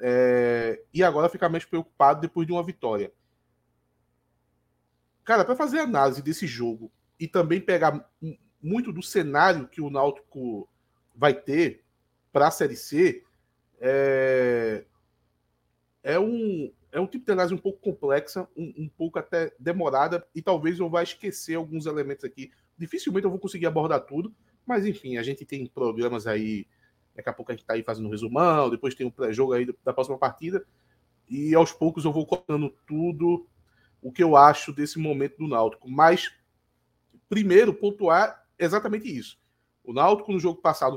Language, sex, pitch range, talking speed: Portuguese, male, 125-175 Hz, 165 wpm